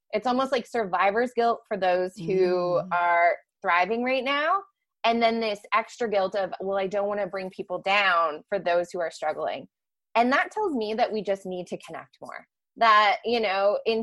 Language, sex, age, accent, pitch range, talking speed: English, female, 20-39, American, 185-235 Hz, 195 wpm